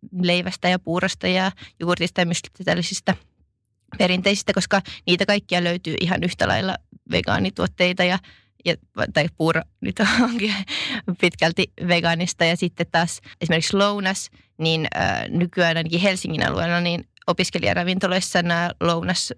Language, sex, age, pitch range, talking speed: Finnish, female, 20-39, 170-195 Hz, 125 wpm